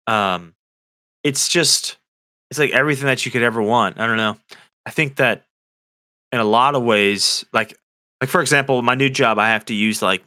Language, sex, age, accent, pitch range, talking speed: English, male, 20-39, American, 110-135 Hz, 200 wpm